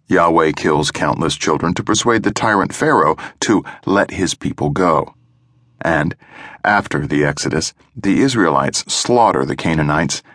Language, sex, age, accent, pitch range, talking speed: English, male, 60-79, American, 95-130 Hz, 135 wpm